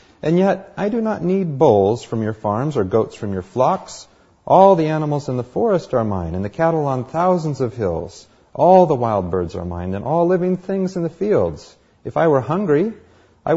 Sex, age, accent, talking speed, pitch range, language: male, 40-59, American, 210 wpm, 100-145 Hz, English